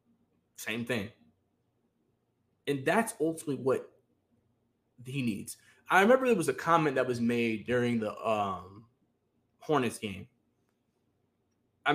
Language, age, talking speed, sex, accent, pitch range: English, 20-39, 115 wpm, male, American, 120-170 Hz